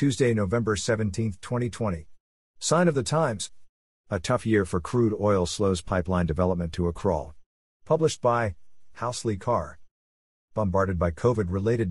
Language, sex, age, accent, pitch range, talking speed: English, male, 50-69, American, 95-115 Hz, 135 wpm